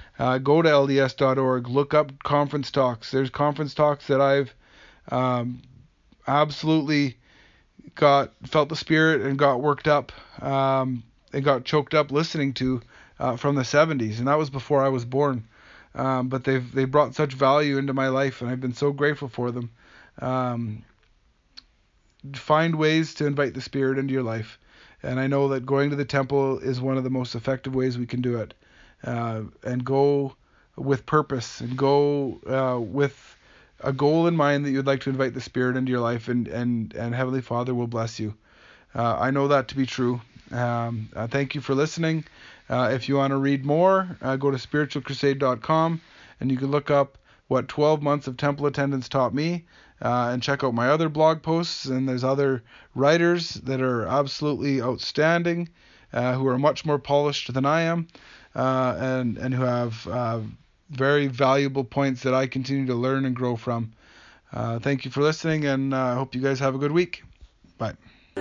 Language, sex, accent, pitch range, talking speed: English, male, American, 125-145 Hz, 185 wpm